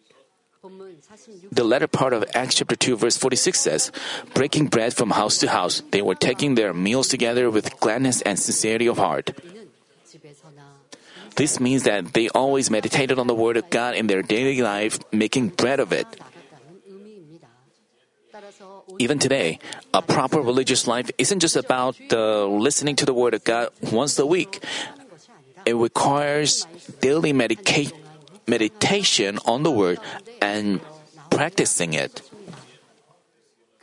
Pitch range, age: 120-190 Hz, 30-49